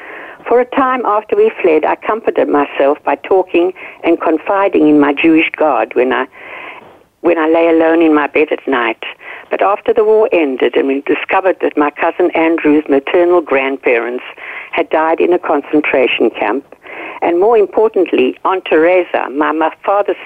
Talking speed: 165 wpm